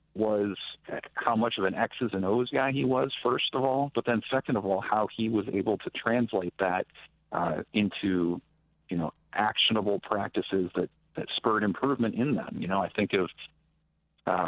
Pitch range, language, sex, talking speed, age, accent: 95-115 Hz, English, male, 180 wpm, 50-69, American